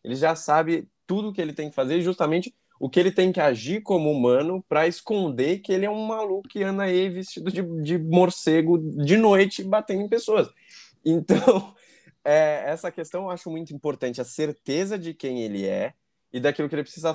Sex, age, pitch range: male, 20-39, 120-180 Hz